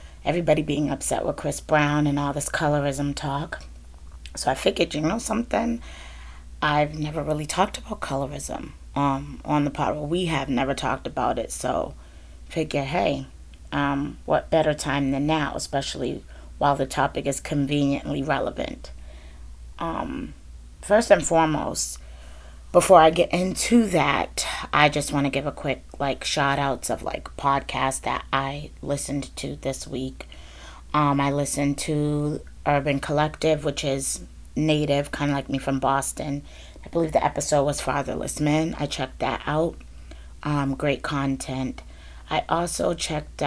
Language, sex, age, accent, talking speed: English, female, 30-49, American, 150 wpm